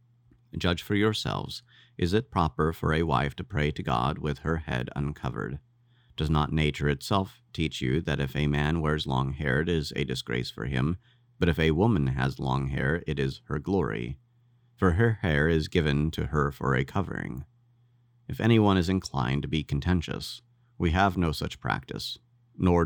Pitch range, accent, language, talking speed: 80-105 Hz, American, English, 185 wpm